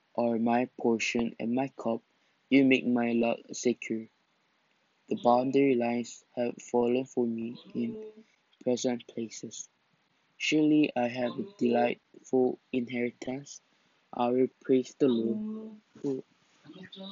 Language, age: English, 20-39